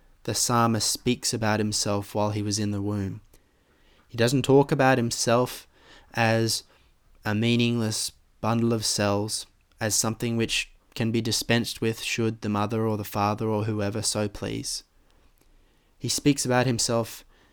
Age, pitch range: 20-39, 100-125 Hz